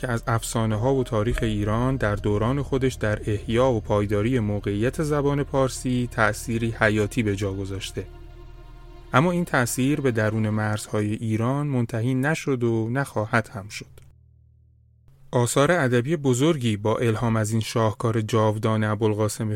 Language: Persian